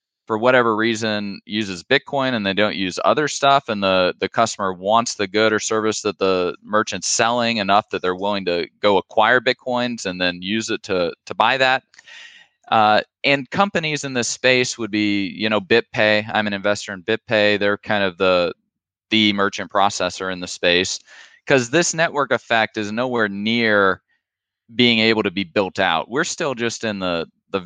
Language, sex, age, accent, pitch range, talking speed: English, male, 20-39, American, 95-115 Hz, 185 wpm